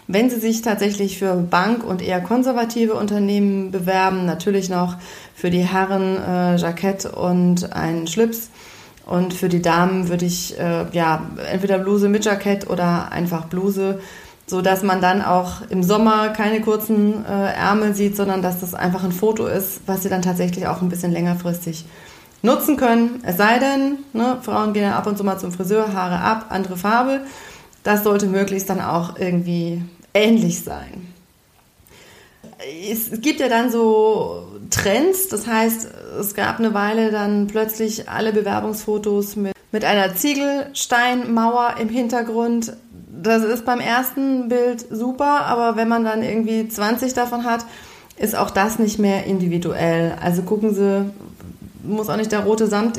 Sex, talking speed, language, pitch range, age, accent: female, 155 wpm, German, 185-225 Hz, 30-49, German